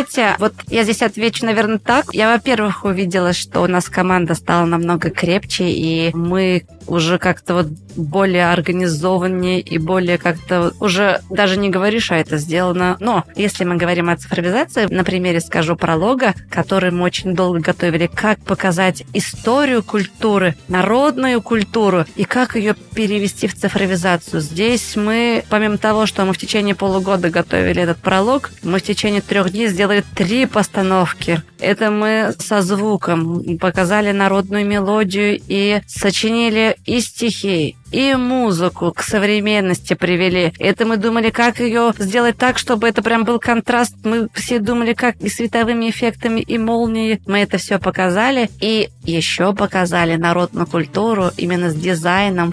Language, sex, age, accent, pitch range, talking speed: Russian, female, 20-39, native, 180-225 Hz, 145 wpm